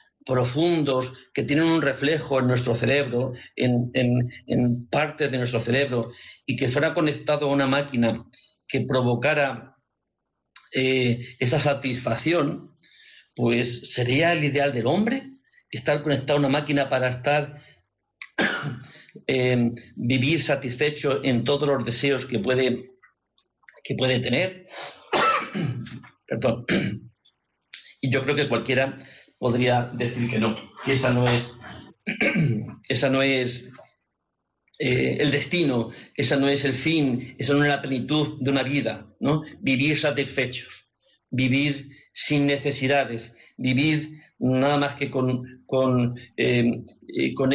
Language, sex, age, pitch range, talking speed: Spanish, male, 50-69, 125-145 Hz, 115 wpm